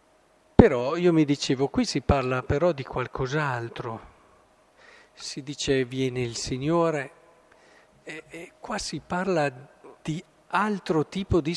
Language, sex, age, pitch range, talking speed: Italian, male, 50-69, 140-195 Hz, 125 wpm